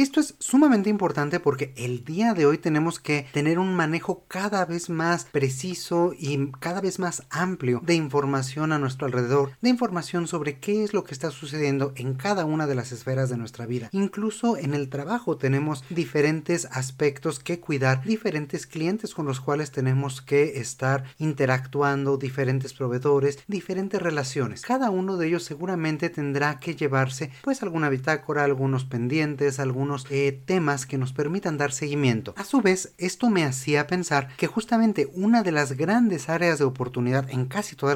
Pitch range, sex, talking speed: 140-180 Hz, male, 170 wpm